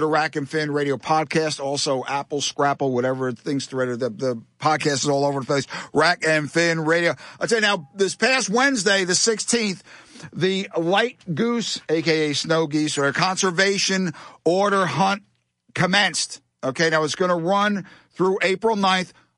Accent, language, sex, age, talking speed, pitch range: American, English, male, 50-69, 165 wpm, 140-170 Hz